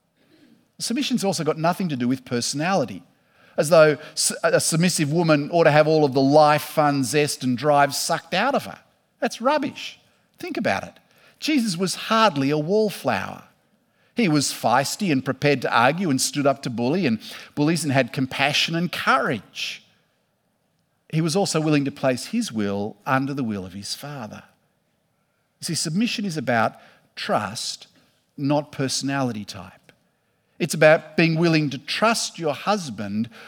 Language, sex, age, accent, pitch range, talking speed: English, male, 50-69, Australian, 145-195 Hz, 160 wpm